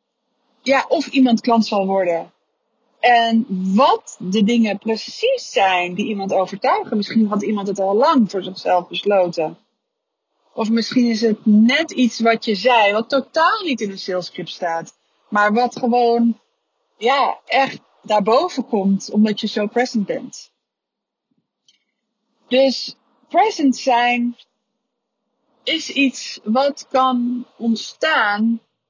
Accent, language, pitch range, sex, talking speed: Dutch, Dutch, 210-260 Hz, female, 125 wpm